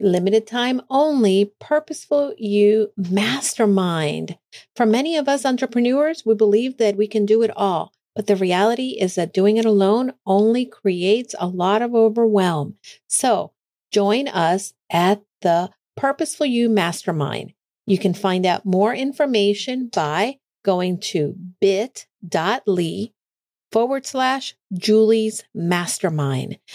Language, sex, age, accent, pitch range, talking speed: English, female, 50-69, American, 190-245 Hz, 125 wpm